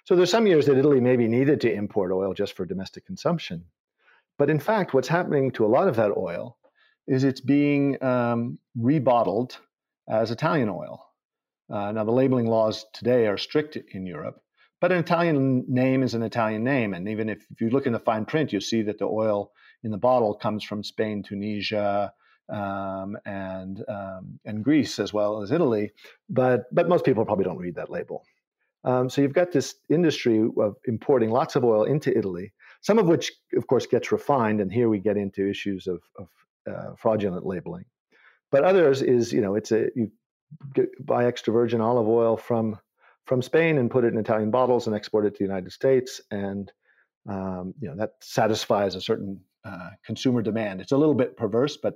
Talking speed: 195 wpm